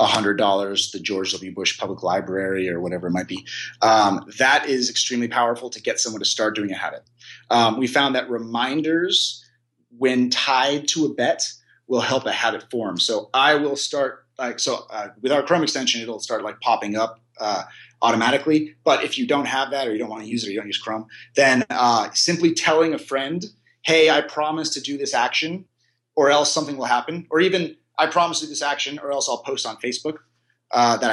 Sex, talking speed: male, 210 wpm